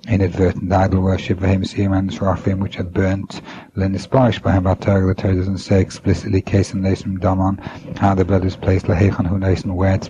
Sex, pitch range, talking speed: male, 95-105 Hz, 170 wpm